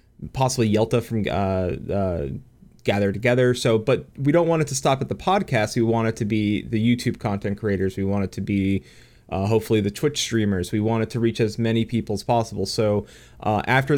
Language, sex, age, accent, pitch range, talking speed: English, male, 20-39, American, 100-120 Hz, 215 wpm